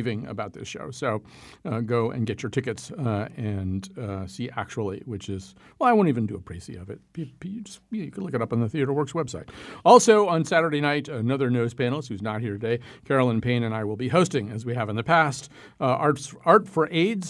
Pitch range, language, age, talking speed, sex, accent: 115-150 Hz, English, 50-69, 240 wpm, male, American